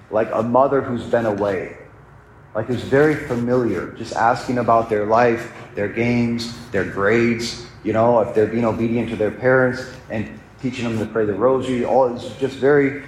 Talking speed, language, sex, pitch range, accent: 180 wpm, English, male, 115-135 Hz, American